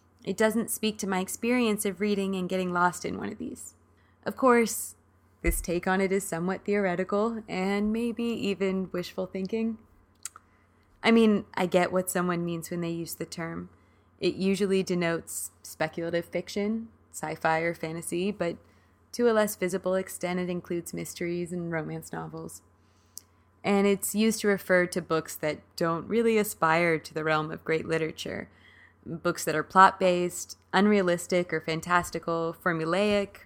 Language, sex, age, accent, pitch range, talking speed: English, female, 20-39, American, 160-200 Hz, 155 wpm